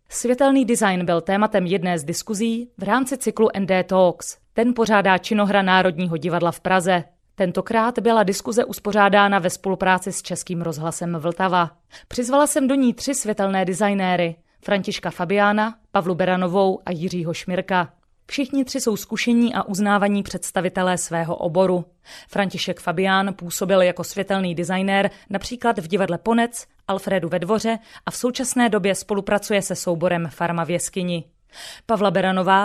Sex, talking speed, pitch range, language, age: female, 145 wpm, 180-215 Hz, Czech, 30-49